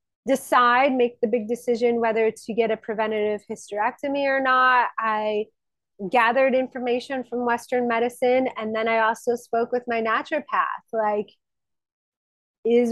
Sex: female